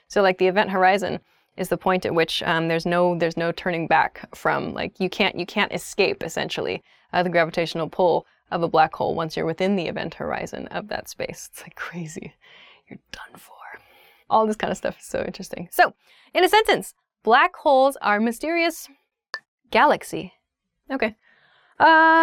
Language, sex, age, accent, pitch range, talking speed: English, female, 20-39, American, 185-260 Hz, 180 wpm